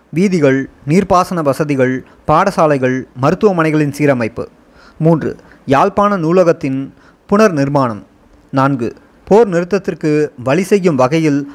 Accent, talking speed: native, 90 wpm